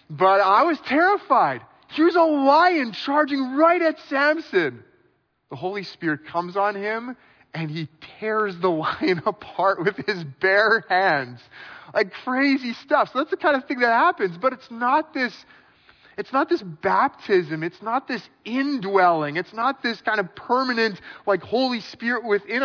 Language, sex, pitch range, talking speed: English, male, 195-270 Hz, 160 wpm